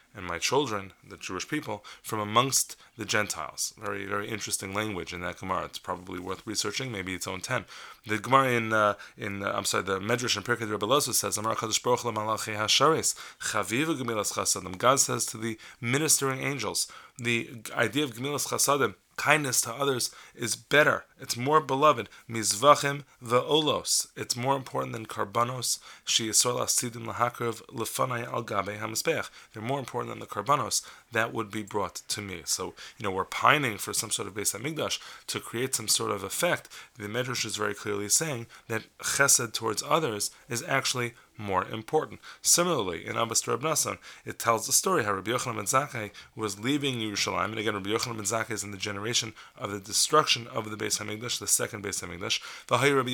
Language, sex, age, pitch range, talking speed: English, male, 20-39, 105-125 Hz, 175 wpm